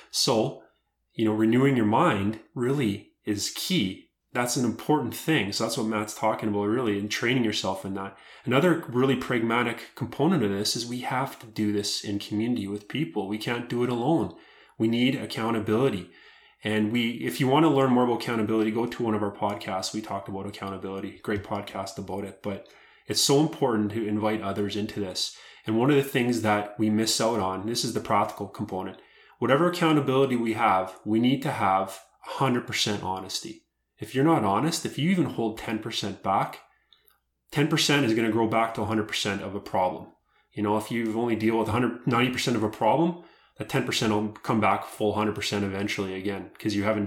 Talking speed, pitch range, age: 195 wpm, 100-120 Hz, 20-39